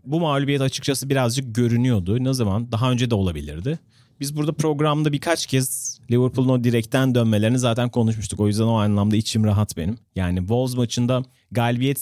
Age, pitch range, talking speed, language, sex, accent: 40-59, 110-130 Hz, 160 wpm, Turkish, male, native